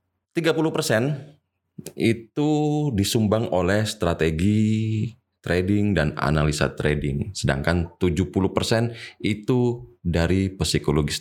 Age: 30-49